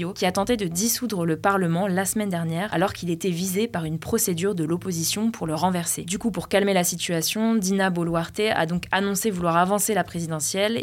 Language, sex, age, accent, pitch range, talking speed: French, female, 20-39, French, 170-210 Hz, 205 wpm